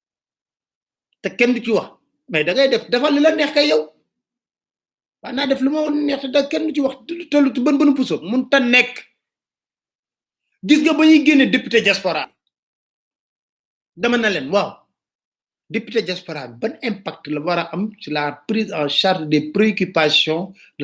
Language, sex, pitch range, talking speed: French, male, 185-270 Hz, 60 wpm